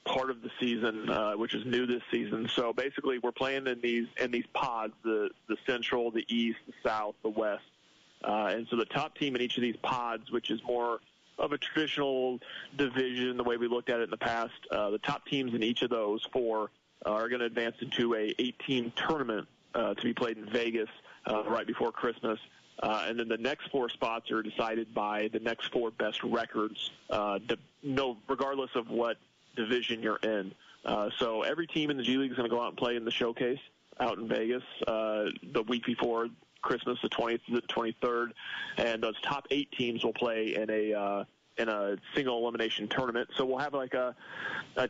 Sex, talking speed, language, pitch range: male, 210 wpm, English, 115-125 Hz